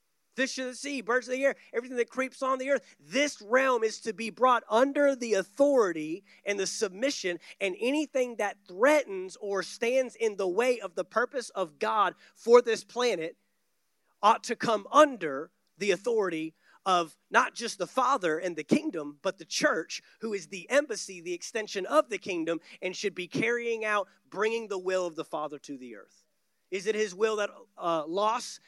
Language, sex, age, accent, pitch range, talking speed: English, male, 30-49, American, 190-255 Hz, 190 wpm